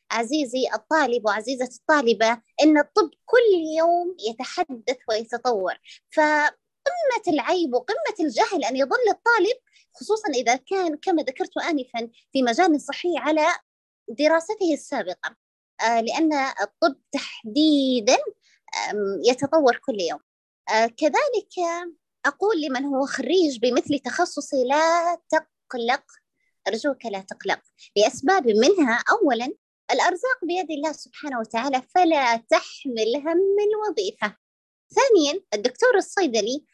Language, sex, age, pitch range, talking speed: Arabic, female, 20-39, 255-360 Hz, 100 wpm